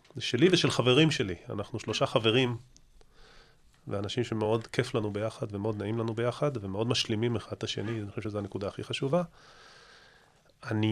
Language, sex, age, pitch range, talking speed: Hebrew, male, 30-49, 110-140 Hz, 160 wpm